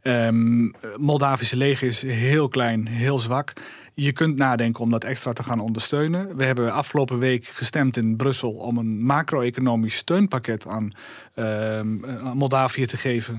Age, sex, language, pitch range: 30-49, male, Dutch, 125-150 Hz